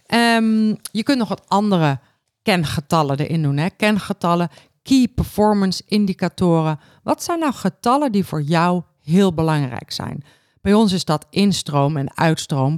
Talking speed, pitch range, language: 145 wpm, 155-200 Hz, Dutch